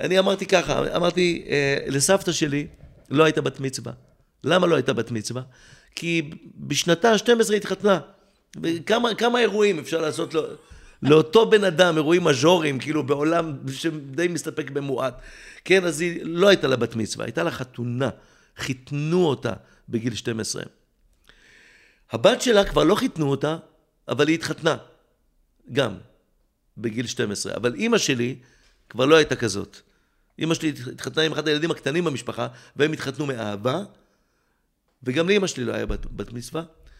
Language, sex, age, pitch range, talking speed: Hebrew, male, 50-69, 130-175 Hz, 140 wpm